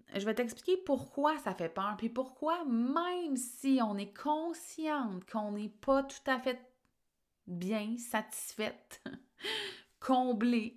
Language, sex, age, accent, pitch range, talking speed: French, female, 20-39, Canadian, 200-250 Hz, 130 wpm